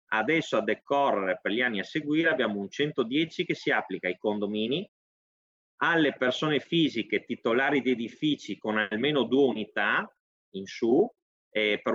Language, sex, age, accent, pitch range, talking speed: Italian, male, 30-49, native, 105-140 Hz, 150 wpm